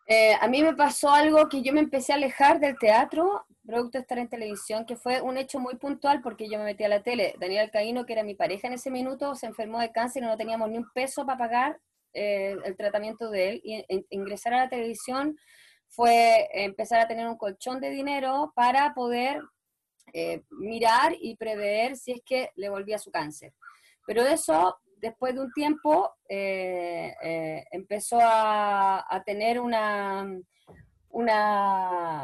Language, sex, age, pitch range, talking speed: Spanish, female, 20-39, 200-255 Hz, 180 wpm